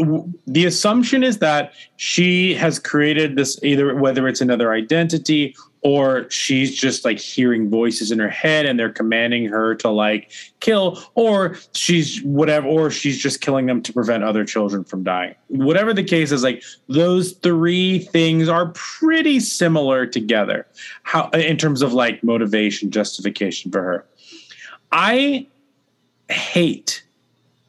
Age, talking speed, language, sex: 30-49, 145 wpm, English, male